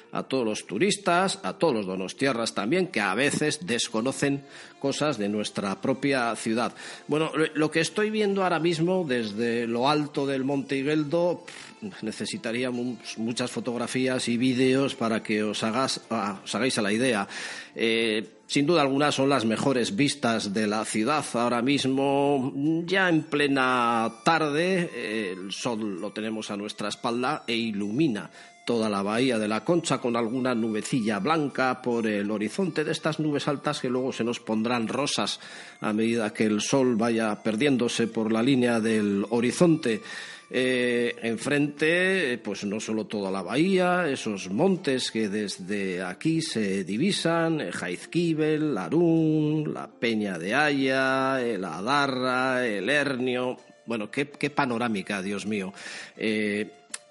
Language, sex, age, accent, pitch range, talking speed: Spanish, male, 40-59, Spanish, 110-150 Hz, 150 wpm